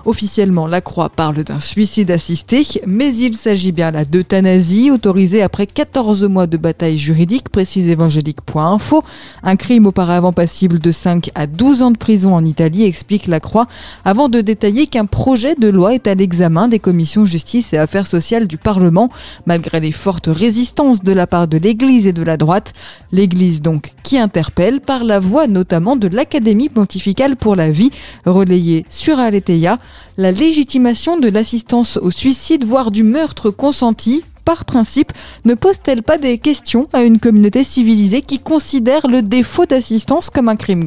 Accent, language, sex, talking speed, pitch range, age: French, French, female, 170 wpm, 185-255 Hz, 20-39